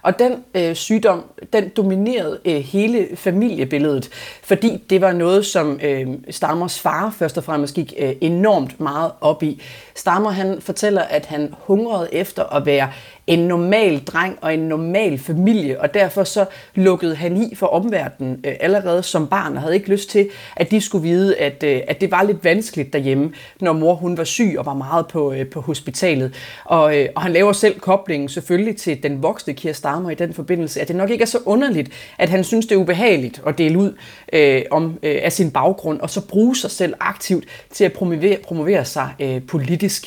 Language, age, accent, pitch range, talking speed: Danish, 30-49, native, 150-195 Hz, 200 wpm